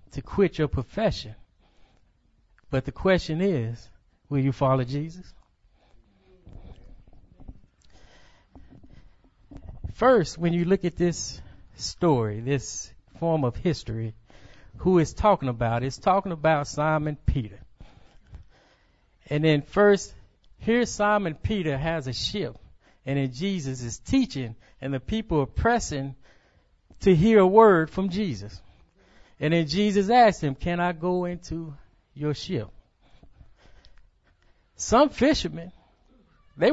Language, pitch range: English, 115-195 Hz